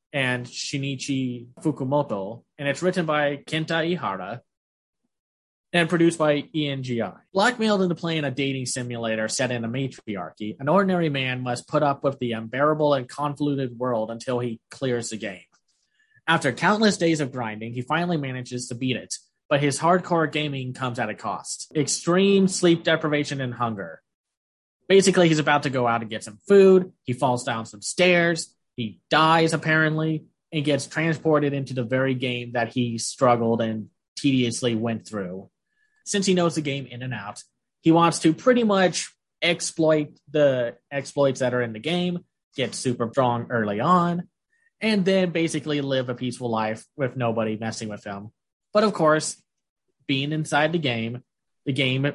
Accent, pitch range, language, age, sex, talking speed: American, 120-165 Hz, English, 20-39, male, 165 wpm